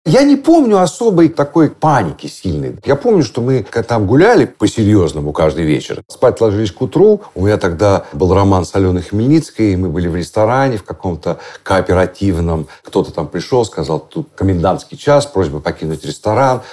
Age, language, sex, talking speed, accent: 50-69, Russian, male, 160 wpm, native